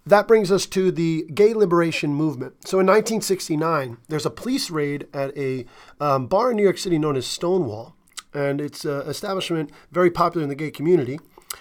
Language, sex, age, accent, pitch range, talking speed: English, male, 40-59, American, 145-175 Hz, 185 wpm